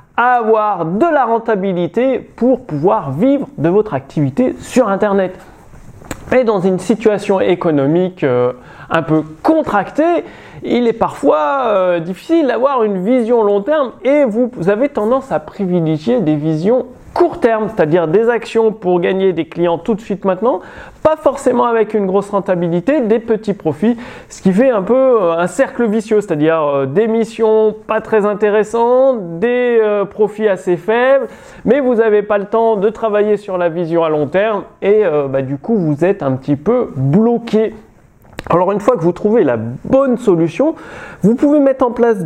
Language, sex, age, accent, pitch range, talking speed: French, male, 30-49, French, 170-235 Hz, 170 wpm